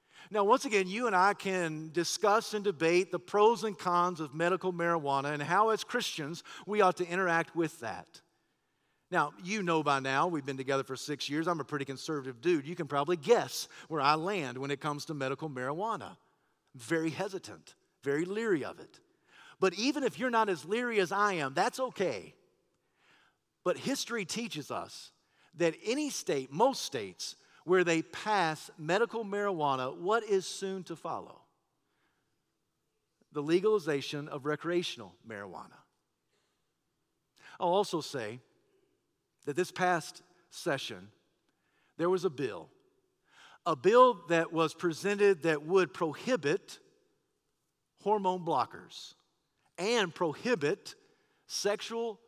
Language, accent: English, American